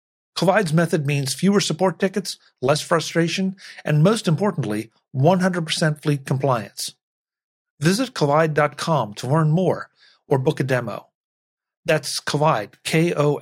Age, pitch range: 50-69, 120-155 Hz